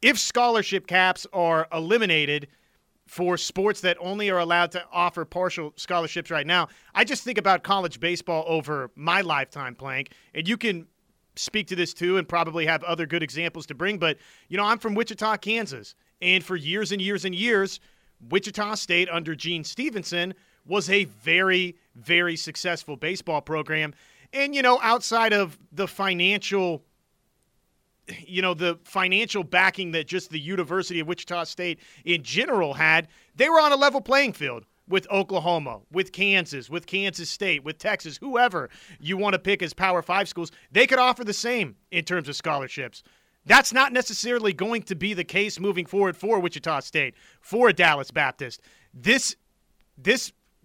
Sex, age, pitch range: male, 30-49, 170-205 Hz